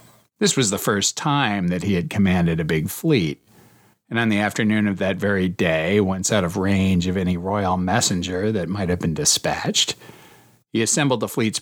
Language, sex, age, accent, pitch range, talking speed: English, male, 40-59, American, 95-120 Hz, 190 wpm